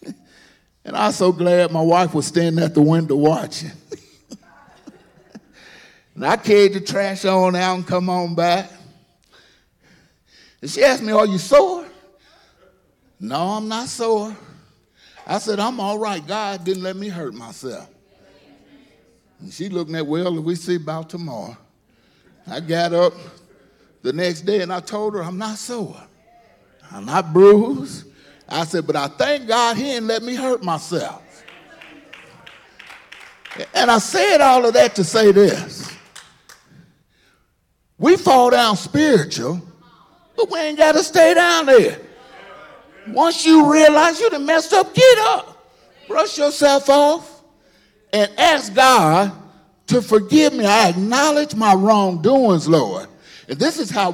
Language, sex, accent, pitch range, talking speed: English, male, American, 175-260 Hz, 145 wpm